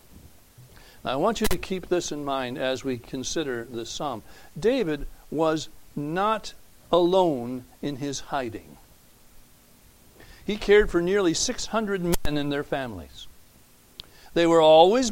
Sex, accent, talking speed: male, American, 125 wpm